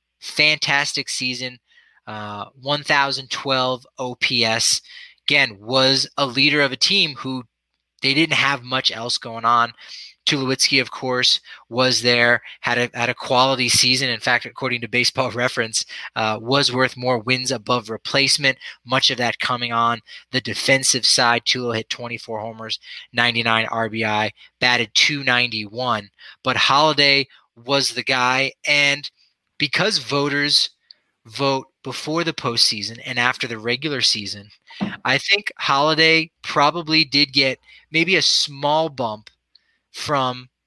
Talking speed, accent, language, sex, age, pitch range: 130 wpm, American, English, male, 20-39, 120-145 Hz